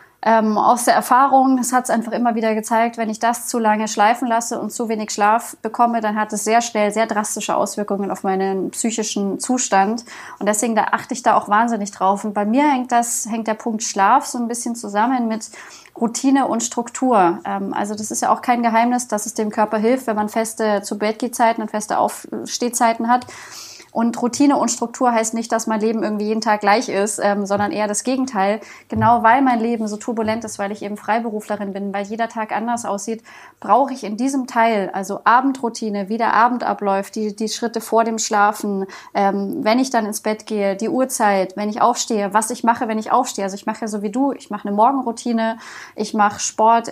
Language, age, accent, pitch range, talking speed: German, 20-39, German, 210-235 Hz, 210 wpm